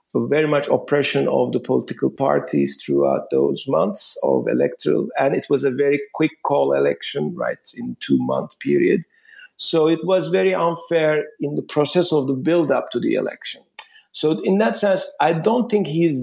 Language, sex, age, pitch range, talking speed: English, male, 50-69, 130-190 Hz, 175 wpm